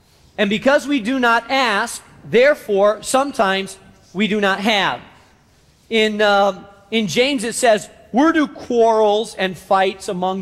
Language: English